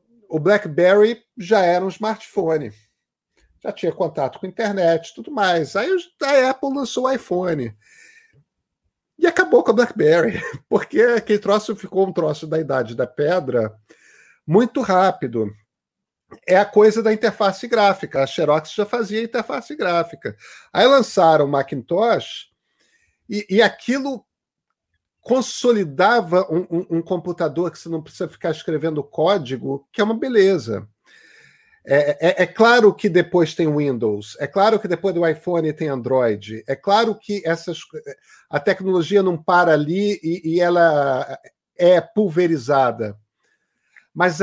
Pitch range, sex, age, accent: 155-215 Hz, male, 50-69, Brazilian